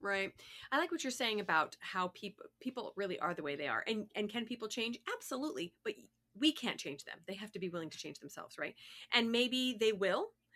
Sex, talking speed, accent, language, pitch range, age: female, 225 wpm, American, English, 185-270 Hz, 30-49